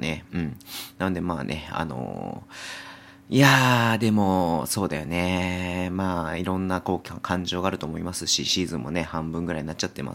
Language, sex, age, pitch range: Japanese, male, 40-59, 80-95 Hz